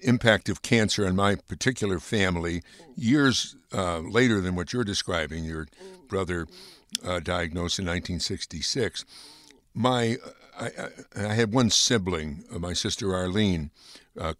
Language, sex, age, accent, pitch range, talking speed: English, male, 60-79, American, 90-120 Hz, 135 wpm